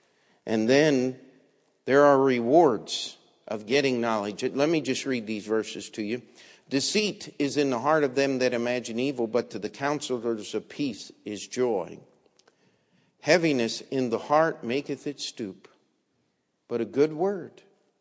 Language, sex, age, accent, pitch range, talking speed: English, male, 50-69, American, 115-150 Hz, 150 wpm